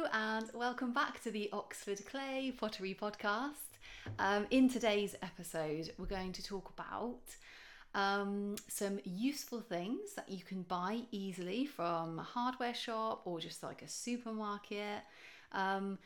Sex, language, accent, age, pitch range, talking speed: female, English, British, 30-49, 180-235 Hz, 140 wpm